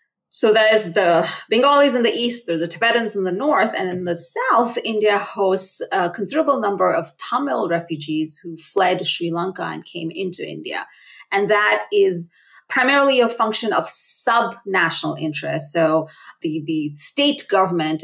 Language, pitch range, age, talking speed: English, 165-220 Hz, 30-49, 155 wpm